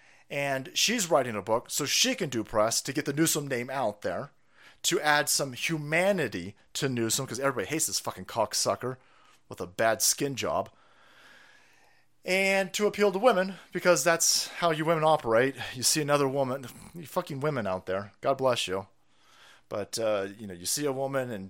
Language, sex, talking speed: English, male, 185 wpm